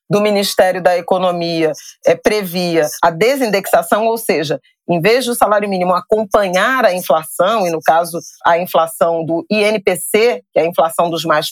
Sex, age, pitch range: female, 40-59, 175-220 Hz